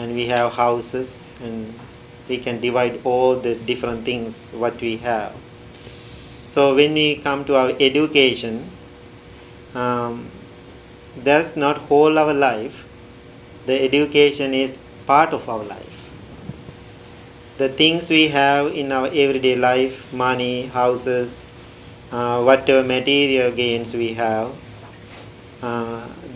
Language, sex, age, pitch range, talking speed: English, male, 40-59, 120-145 Hz, 120 wpm